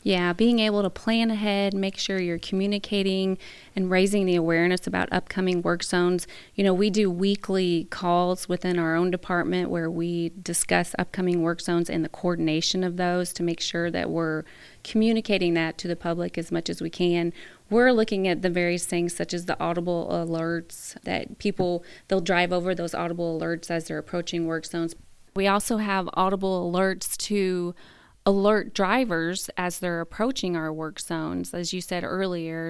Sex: female